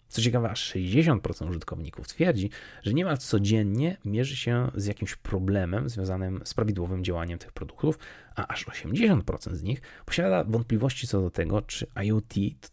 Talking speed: 155 wpm